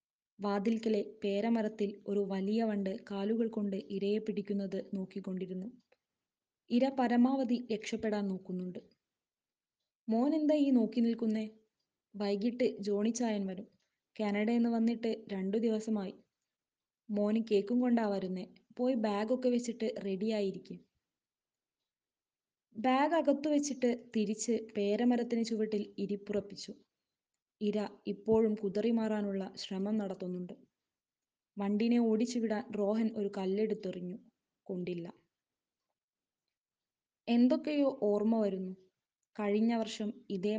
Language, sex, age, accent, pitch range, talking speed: Malayalam, female, 20-39, native, 200-230 Hz, 85 wpm